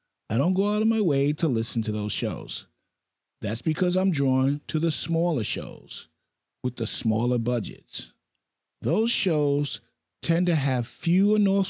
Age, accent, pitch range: 50-69, American, 110-160 Hz